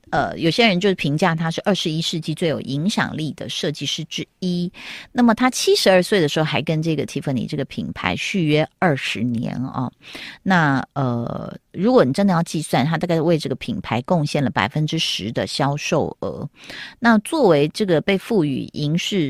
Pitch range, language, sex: 150-200 Hz, Chinese, female